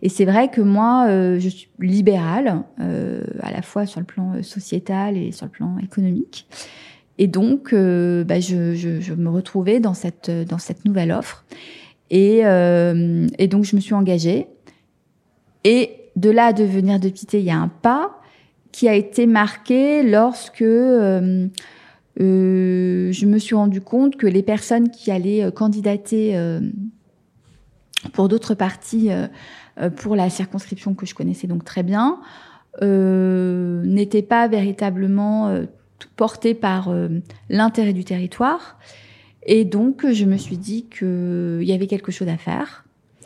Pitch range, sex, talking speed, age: 185-220 Hz, female, 155 wpm, 30-49